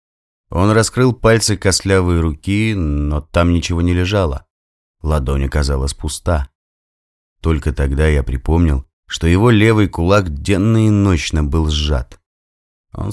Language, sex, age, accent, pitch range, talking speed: Russian, male, 30-49, native, 70-90 Hz, 125 wpm